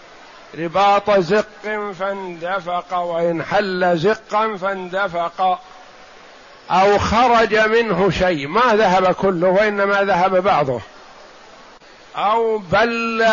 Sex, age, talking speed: male, 50-69, 85 wpm